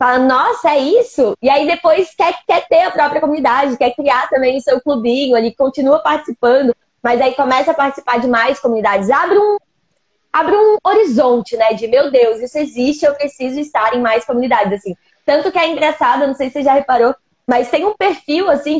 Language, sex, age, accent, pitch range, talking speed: Portuguese, female, 20-39, Brazilian, 240-300 Hz, 200 wpm